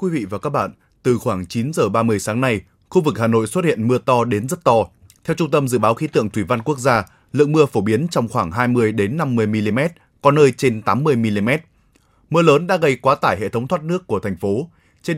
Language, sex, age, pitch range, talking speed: Vietnamese, male, 20-39, 110-150 Hz, 250 wpm